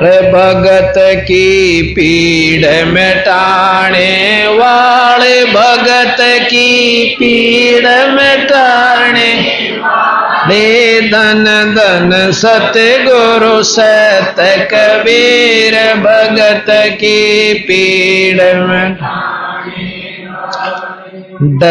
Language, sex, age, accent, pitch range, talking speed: Hindi, male, 50-69, native, 185-240 Hz, 65 wpm